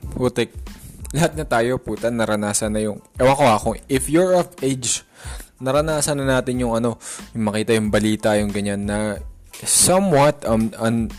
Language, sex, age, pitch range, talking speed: Filipino, male, 20-39, 105-135 Hz, 160 wpm